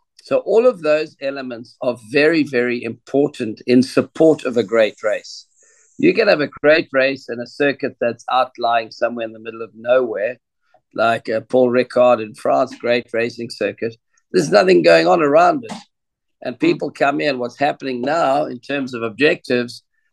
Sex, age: male, 50-69